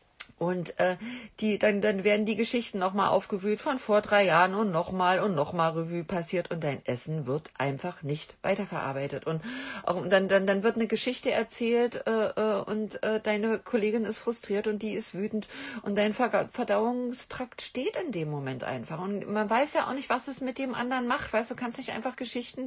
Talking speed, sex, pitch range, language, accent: 195 wpm, female, 175-225 Hz, German, German